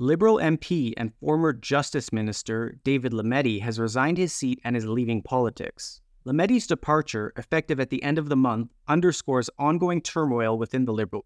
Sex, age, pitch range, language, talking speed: male, 30-49, 120-155 Hz, English, 165 wpm